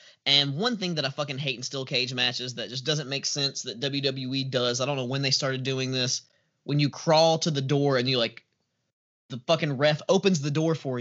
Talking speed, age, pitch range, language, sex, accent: 235 wpm, 20-39, 125-155 Hz, English, male, American